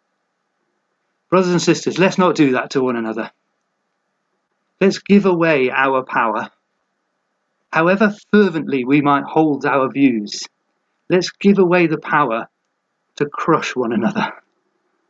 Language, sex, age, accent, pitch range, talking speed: English, male, 40-59, British, 135-175 Hz, 125 wpm